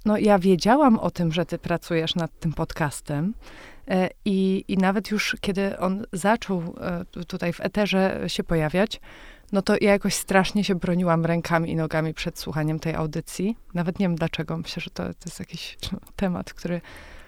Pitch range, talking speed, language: 175-210 Hz, 170 wpm, Polish